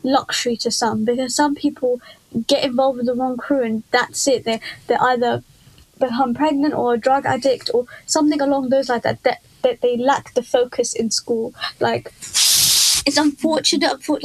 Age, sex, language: 20-39, female, English